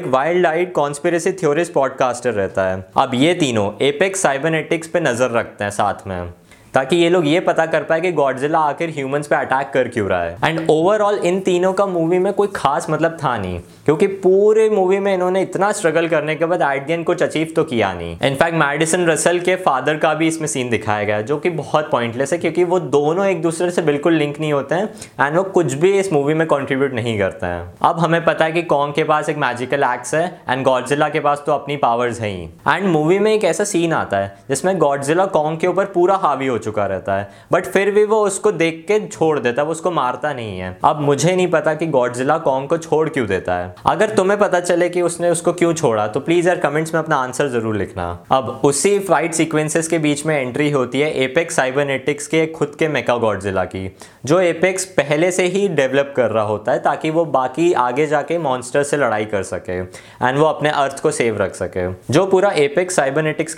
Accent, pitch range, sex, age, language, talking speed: native, 130-175 Hz, male, 20-39, Hindi, 195 wpm